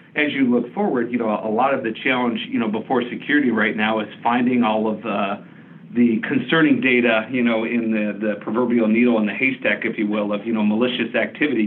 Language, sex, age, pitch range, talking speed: English, male, 50-69, 105-120 Hz, 225 wpm